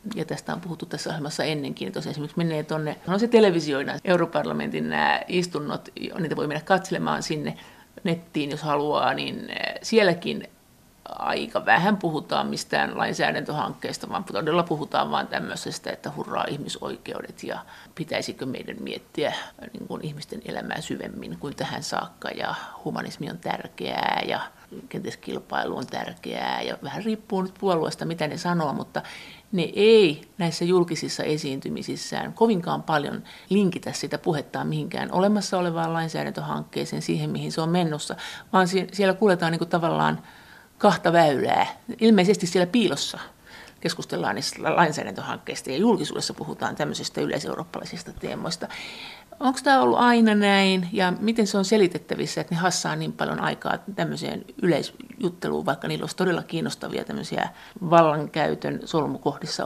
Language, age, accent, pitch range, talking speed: Finnish, 50-69, native, 150-200 Hz, 130 wpm